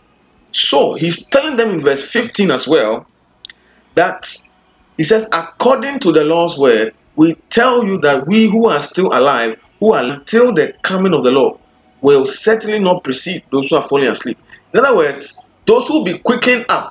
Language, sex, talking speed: English, male, 185 wpm